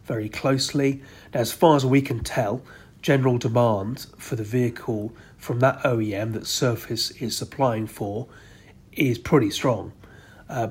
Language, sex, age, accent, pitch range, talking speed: English, male, 40-59, British, 110-130 Hz, 145 wpm